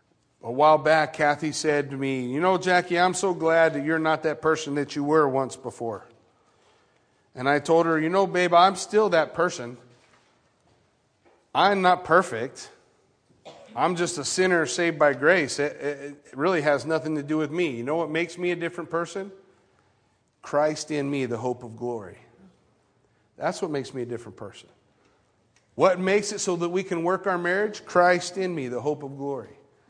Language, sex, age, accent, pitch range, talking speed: English, male, 40-59, American, 145-200 Hz, 185 wpm